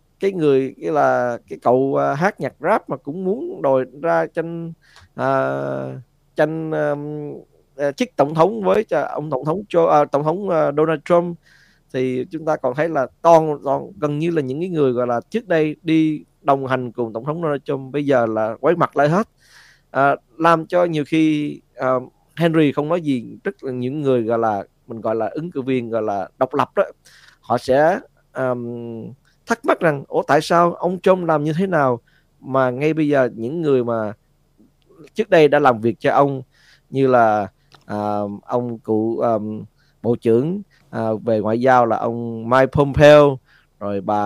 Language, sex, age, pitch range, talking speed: Vietnamese, male, 20-39, 115-155 Hz, 190 wpm